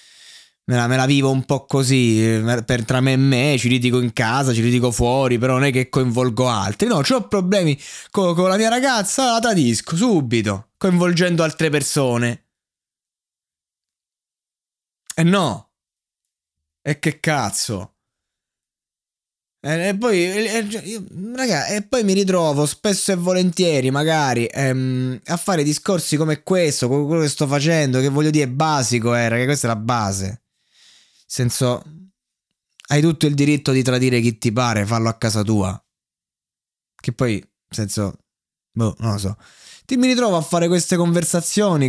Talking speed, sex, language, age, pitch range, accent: 160 wpm, male, Italian, 20-39, 125-170 Hz, native